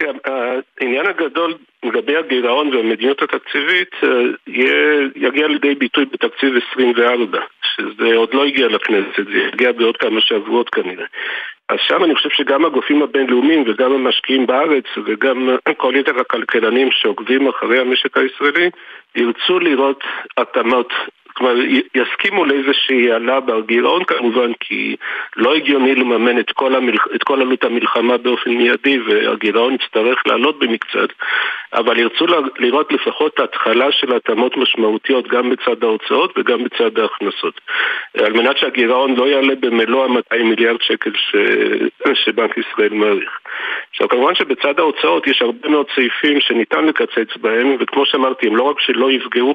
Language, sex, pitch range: Hebrew, male, 120-180 Hz